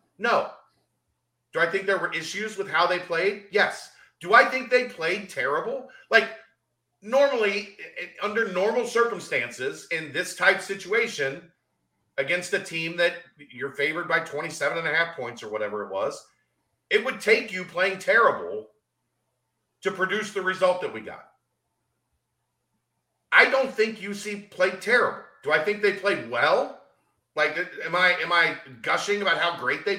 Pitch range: 155-225 Hz